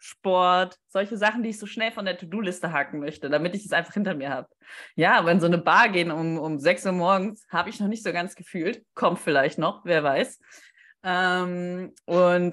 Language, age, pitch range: German, 20-39, 170-205 Hz